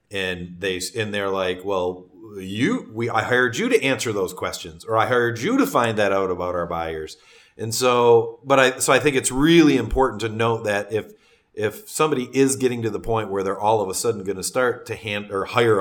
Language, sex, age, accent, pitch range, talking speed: English, male, 40-59, American, 100-120 Hz, 230 wpm